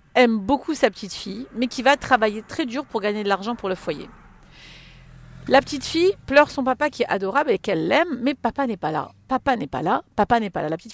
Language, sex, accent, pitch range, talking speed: French, female, French, 195-280 Hz, 265 wpm